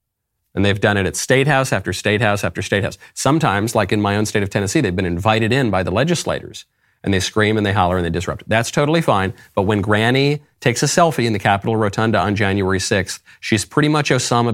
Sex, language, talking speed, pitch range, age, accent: male, English, 225 wpm, 95-120 Hz, 40-59, American